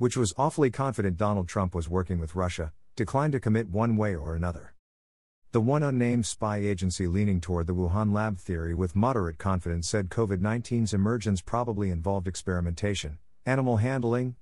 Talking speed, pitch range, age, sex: 160 wpm, 85-110 Hz, 50-69, male